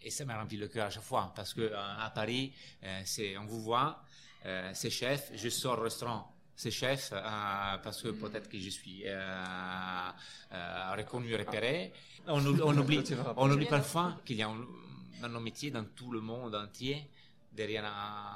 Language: French